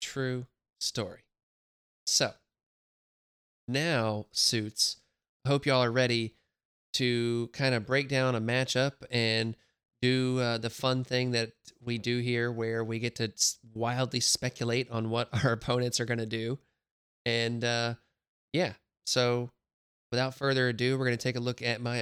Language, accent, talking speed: English, American, 155 wpm